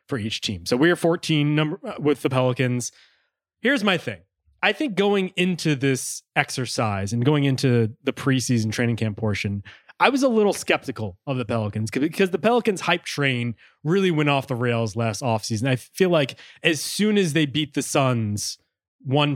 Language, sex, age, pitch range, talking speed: English, male, 20-39, 115-155 Hz, 185 wpm